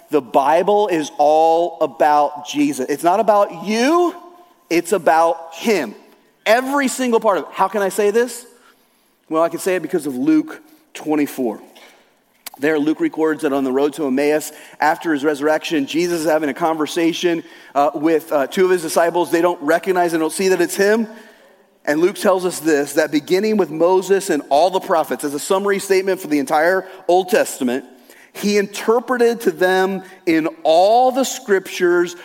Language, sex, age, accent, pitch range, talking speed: English, male, 30-49, American, 155-235 Hz, 175 wpm